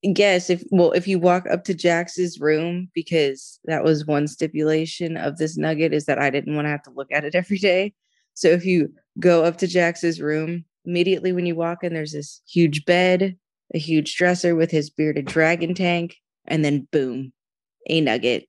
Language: English